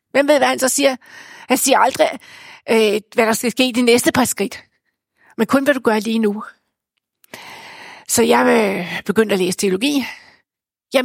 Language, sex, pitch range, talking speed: Danish, female, 210-270 Hz, 175 wpm